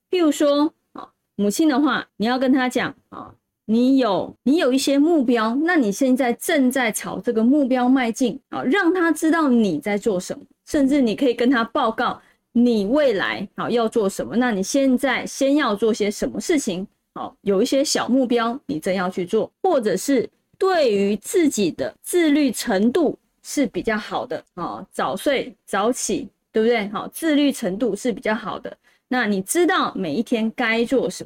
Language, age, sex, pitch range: Chinese, 20-39, female, 215-270 Hz